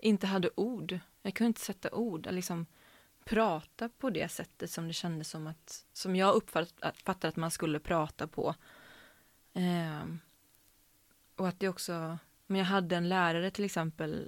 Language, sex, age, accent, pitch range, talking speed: Swedish, female, 20-39, native, 170-220 Hz, 165 wpm